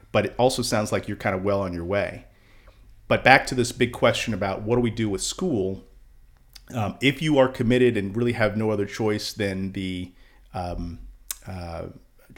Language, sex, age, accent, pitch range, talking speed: English, male, 40-59, American, 100-130 Hz, 195 wpm